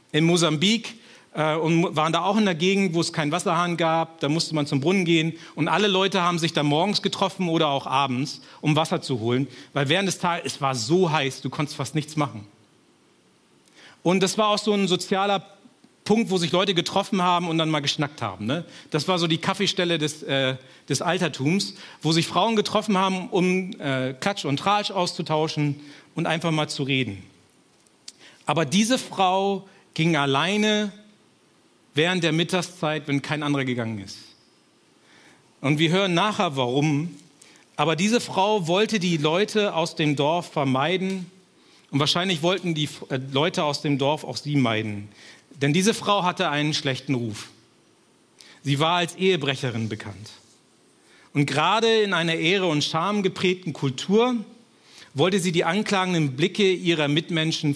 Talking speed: 165 wpm